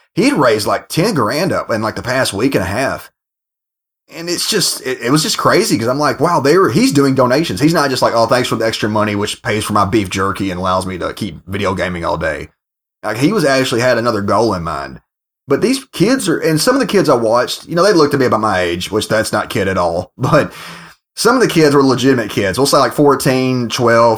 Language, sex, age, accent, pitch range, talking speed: English, male, 30-49, American, 100-135 Hz, 260 wpm